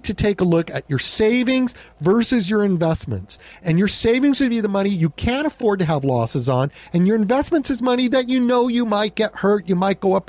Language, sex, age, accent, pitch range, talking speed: English, male, 50-69, American, 155-215 Hz, 235 wpm